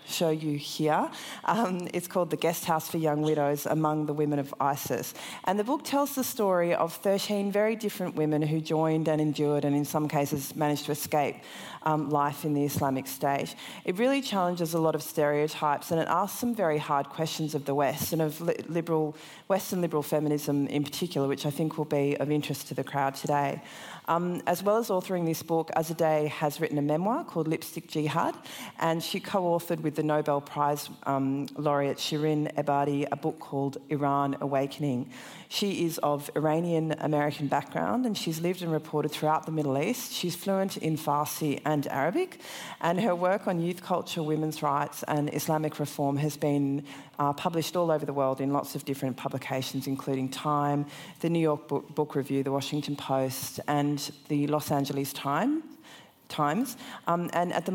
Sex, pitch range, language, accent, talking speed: female, 145-170 Hz, English, Australian, 180 wpm